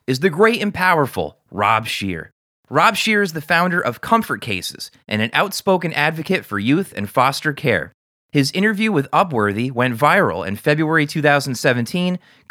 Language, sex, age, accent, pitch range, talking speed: English, male, 30-49, American, 125-180 Hz, 160 wpm